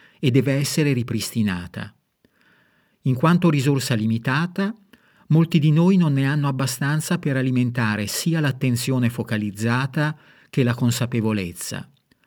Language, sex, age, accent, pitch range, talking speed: Italian, male, 40-59, native, 115-150 Hz, 110 wpm